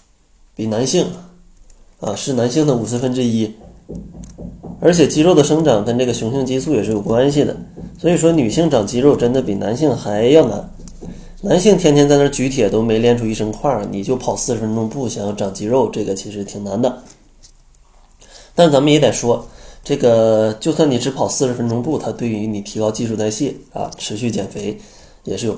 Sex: male